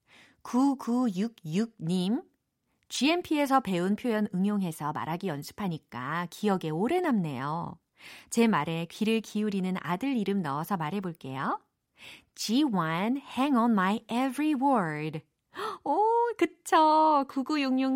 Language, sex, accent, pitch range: Korean, female, native, 175-260 Hz